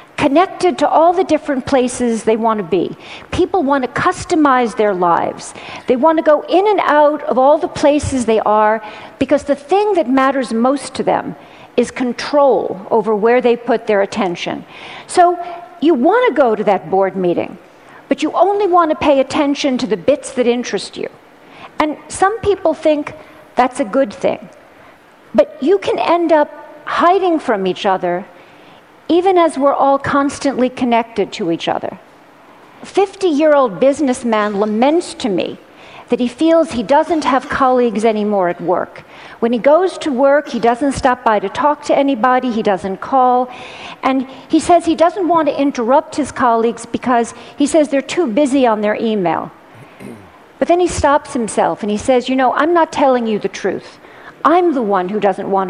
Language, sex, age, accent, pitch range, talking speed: English, female, 50-69, American, 230-310 Hz, 180 wpm